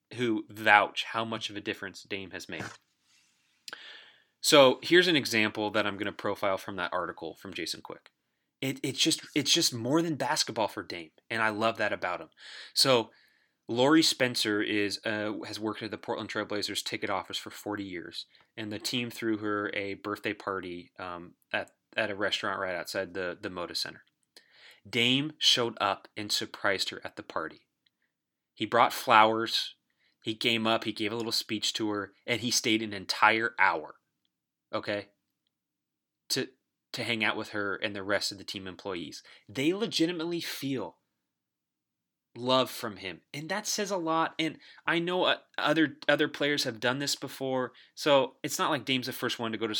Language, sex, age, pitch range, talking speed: English, male, 30-49, 105-140 Hz, 185 wpm